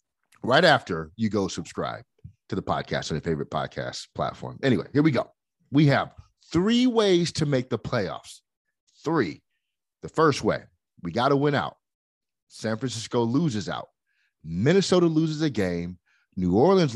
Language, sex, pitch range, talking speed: English, male, 90-140 Hz, 160 wpm